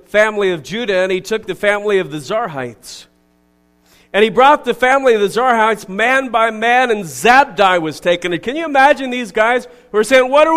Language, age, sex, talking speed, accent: English, 40-59, male, 210 wpm, American